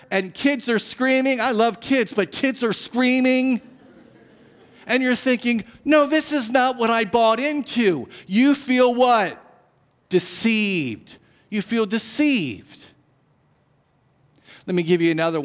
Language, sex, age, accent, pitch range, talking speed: English, male, 50-69, American, 190-265 Hz, 130 wpm